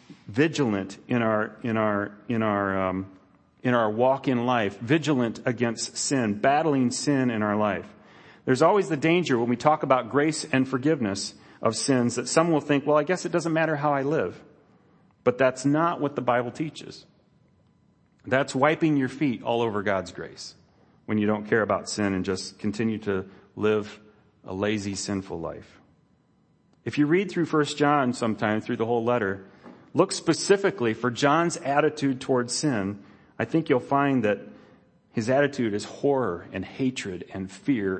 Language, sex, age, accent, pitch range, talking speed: English, male, 40-59, American, 105-140 Hz, 170 wpm